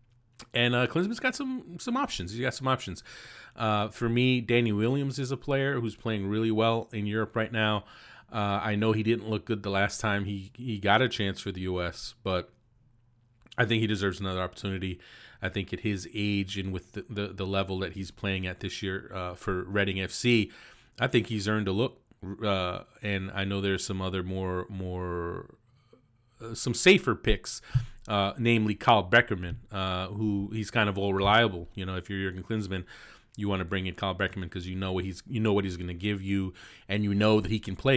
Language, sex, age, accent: English, male, 30-49, American